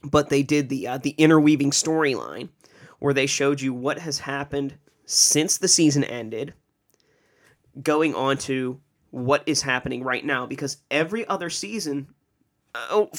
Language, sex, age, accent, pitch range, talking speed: English, male, 30-49, American, 130-150 Hz, 145 wpm